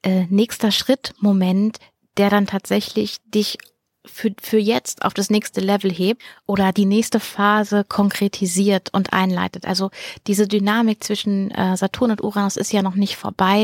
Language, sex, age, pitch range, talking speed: German, female, 30-49, 195-220 Hz, 145 wpm